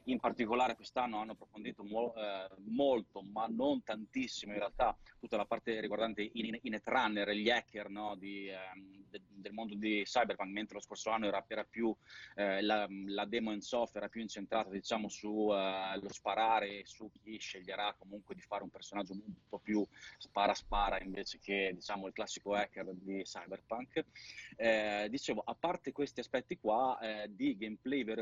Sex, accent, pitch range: male, native, 105-115 Hz